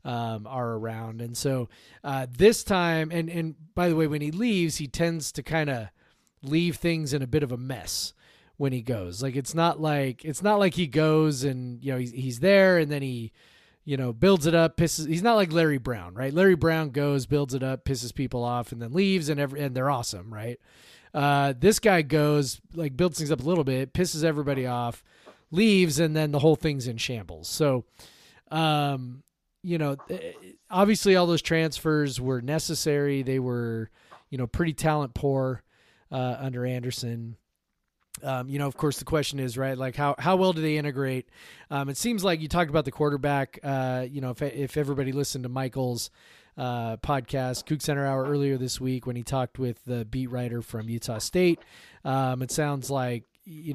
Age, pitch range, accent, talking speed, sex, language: 30-49, 125-160 Hz, American, 200 wpm, male, English